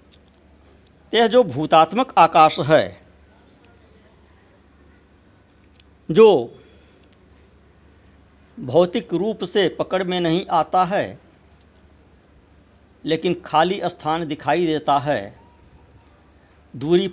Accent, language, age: native, Hindi, 50-69